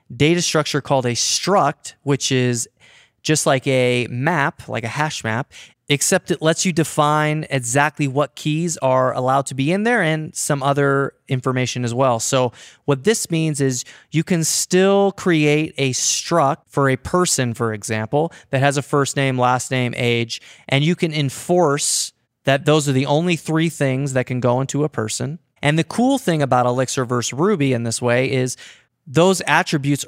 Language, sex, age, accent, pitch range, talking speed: English, male, 30-49, American, 130-160 Hz, 180 wpm